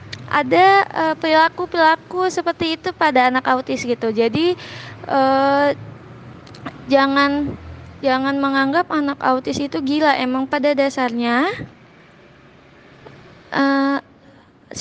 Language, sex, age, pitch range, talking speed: Indonesian, female, 20-39, 245-295 Hz, 90 wpm